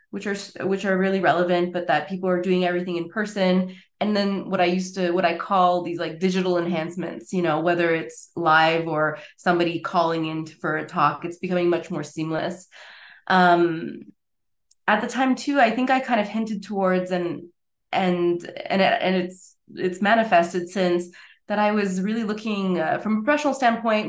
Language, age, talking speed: English, 20-39, 185 wpm